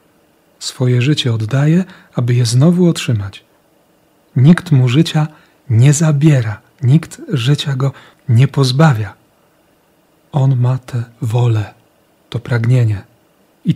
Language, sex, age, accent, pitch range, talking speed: Polish, male, 40-59, native, 115-150 Hz, 105 wpm